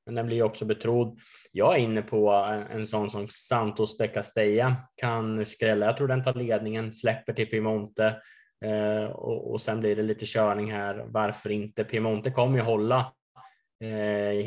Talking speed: 165 wpm